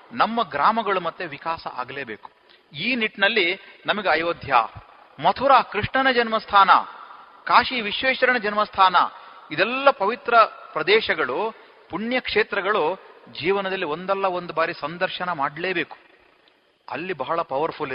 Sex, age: male, 40-59